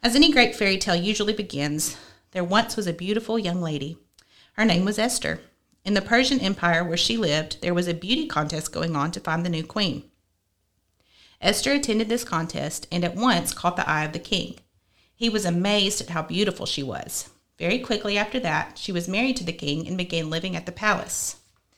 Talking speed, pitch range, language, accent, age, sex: 205 wpm, 155-210 Hz, English, American, 40-59, female